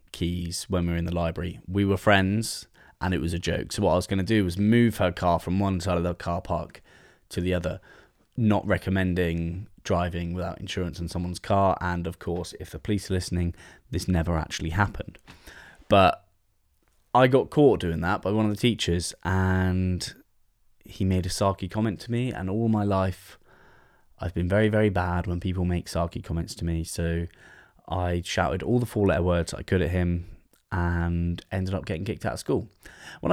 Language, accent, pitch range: English, British, 85-100 Hz